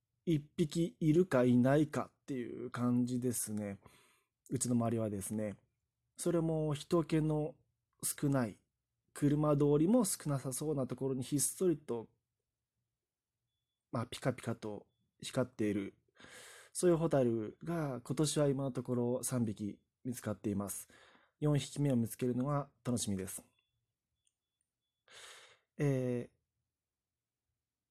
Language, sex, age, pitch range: Japanese, male, 20-39, 120-155 Hz